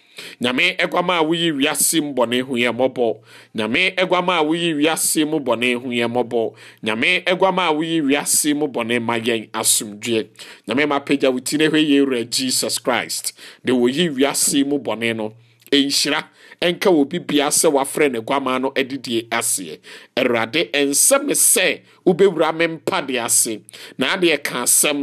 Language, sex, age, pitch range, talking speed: English, male, 50-69, 125-175 Hz, 135 wpm